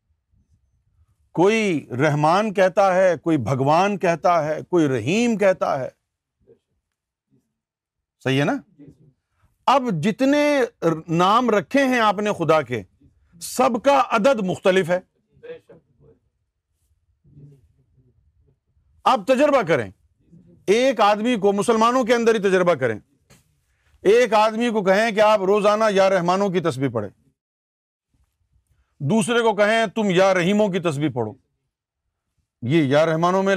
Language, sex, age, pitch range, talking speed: Urdu, male, 50-69, 125-215 Hz, 120 wpm